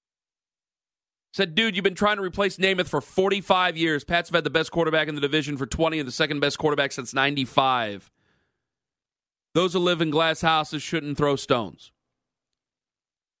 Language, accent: English, American